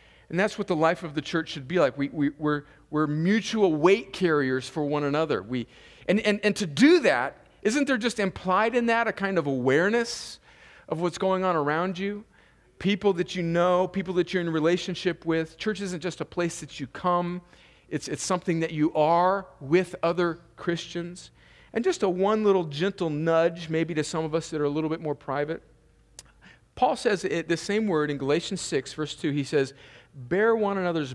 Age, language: 40-59, English